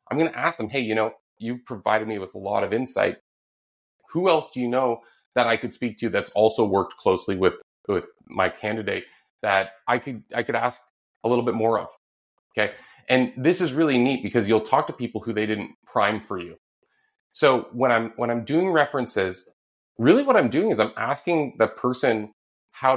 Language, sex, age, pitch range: English, male, 30-49, 105-125 Hz